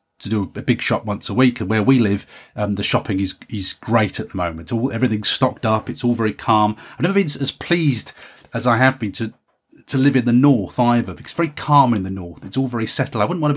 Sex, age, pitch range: male, 30-49, 105-130 Hz